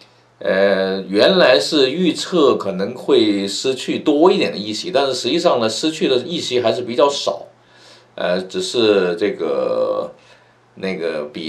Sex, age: male, 50-69